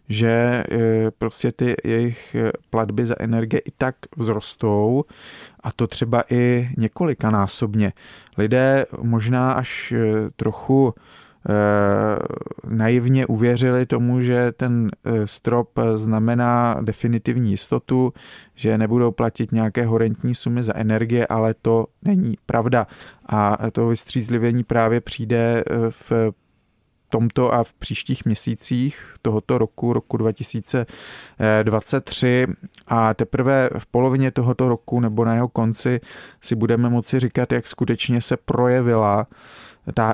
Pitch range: 110-125 Hz